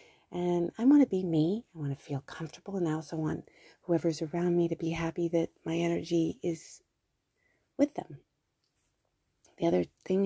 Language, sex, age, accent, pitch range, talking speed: English, female, 30-49, American, 155-200 Hz, 175 wpm